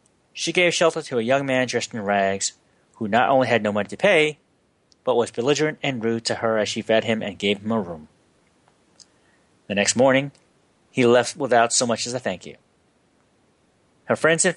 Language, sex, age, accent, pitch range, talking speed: English, male, 30-49, American, 110-145 Hz, 200 wpm